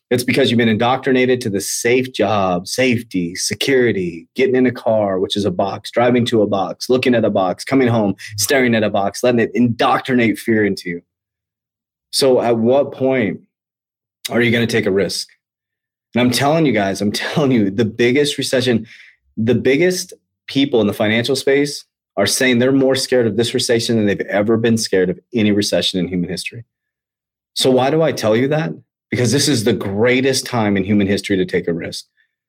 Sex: male